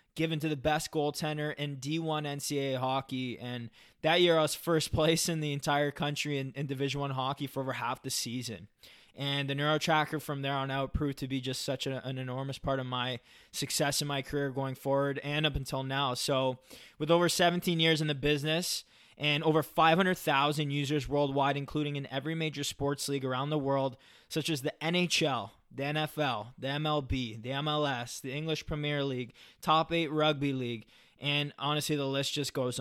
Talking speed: 190 wpm